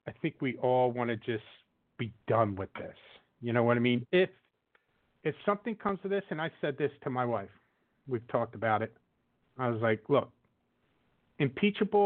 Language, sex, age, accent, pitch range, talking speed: English, male, 50-69, American, 125-190 Hz, 190 wpm